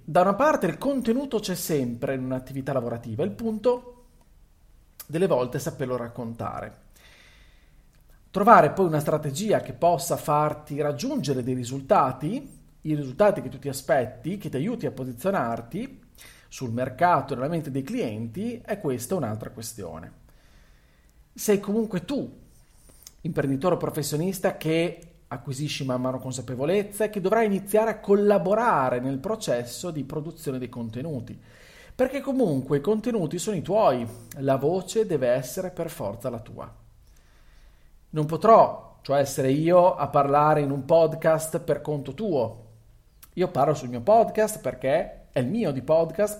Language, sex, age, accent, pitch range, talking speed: Italian, male, 40-59, native, 130-180 Hz, 140 wpm